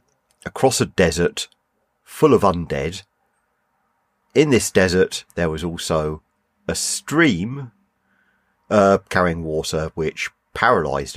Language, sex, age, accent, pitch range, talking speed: English, male, 40-59, British, 80-100 Hz, 100 wpm